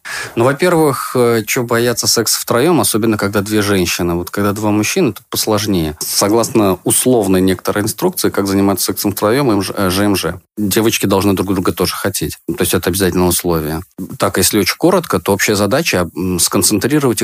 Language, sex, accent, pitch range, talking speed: Russian, male, native, 90-115 Hz, 155 wpm